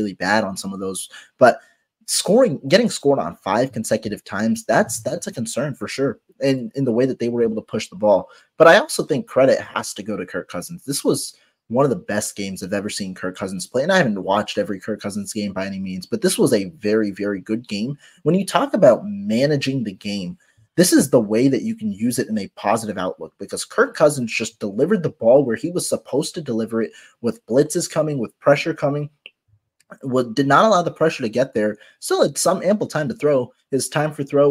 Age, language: 20-39, English